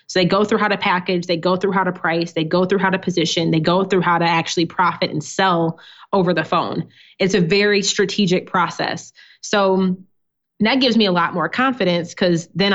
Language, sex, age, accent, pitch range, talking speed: English, female, 20-39, American, 170-200 Hz, 215 wpm